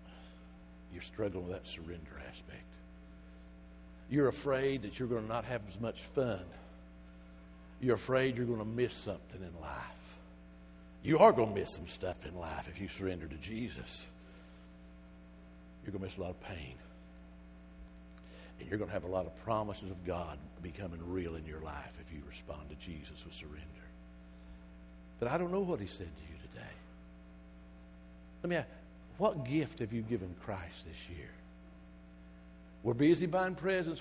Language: English